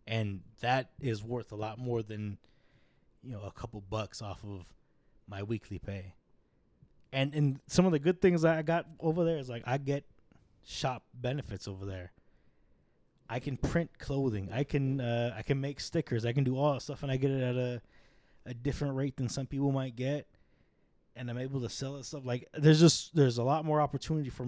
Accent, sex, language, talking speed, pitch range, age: American, male, English, 210 wpm, 110-135 Hz, 20-39